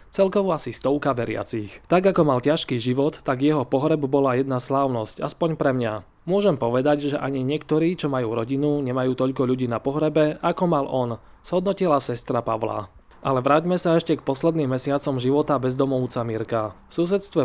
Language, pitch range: Slovak, 125-155 Hz